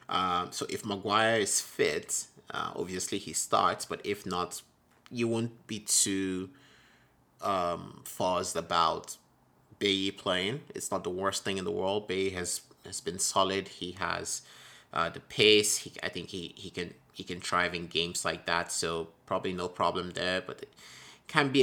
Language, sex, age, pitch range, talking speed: English, male, 30-49, 90-100 Hz, 170 wpm